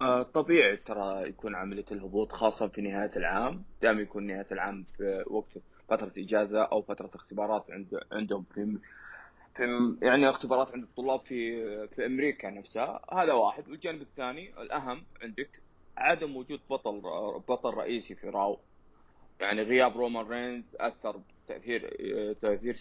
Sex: male